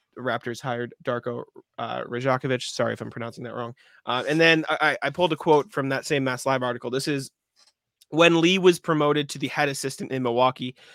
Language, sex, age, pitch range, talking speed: English, male, 20-39, 125-150 Hz, 205 wpm